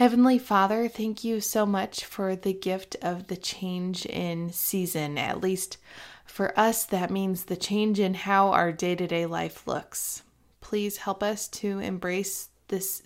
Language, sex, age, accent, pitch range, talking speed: English, female, 20-39, American, 175-200 Hz, 155 wpm